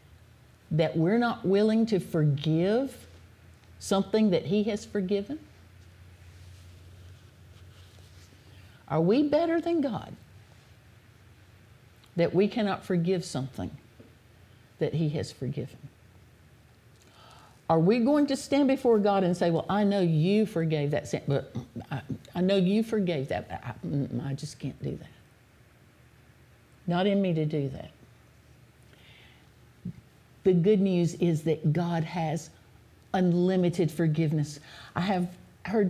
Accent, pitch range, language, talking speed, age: American, 135-190 Hz, English, 120 wpm, 50-69